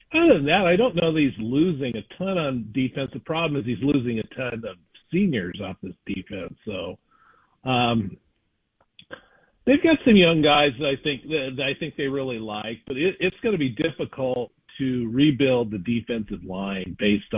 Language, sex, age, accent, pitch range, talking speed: English, male, 50-69, American, 100-135 Hz, 185 wpm